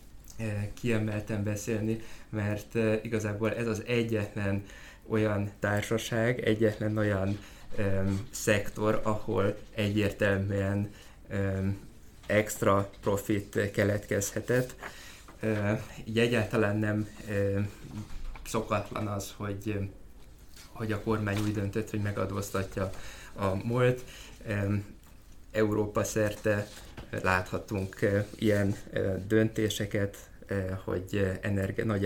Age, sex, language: 20-39, male, Hungarian